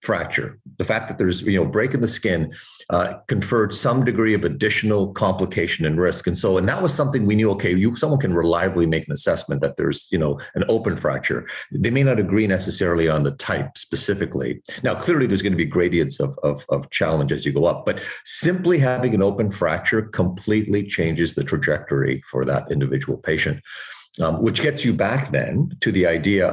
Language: English